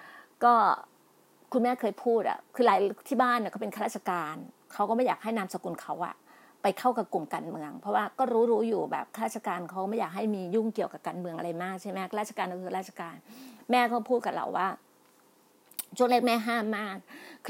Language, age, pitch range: Thai, 30-49, 190-240 Hz